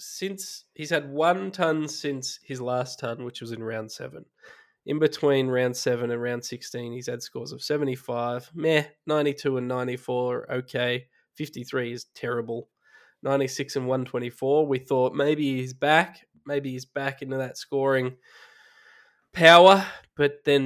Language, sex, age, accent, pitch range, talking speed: English, male, 20-39, Australian, 125-145 Hz, 150 wpm